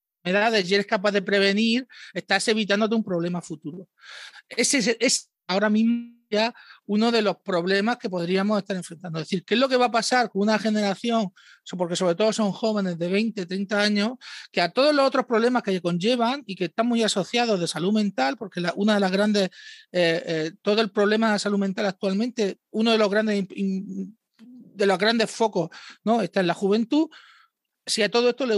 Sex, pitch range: male, 185-225 Hz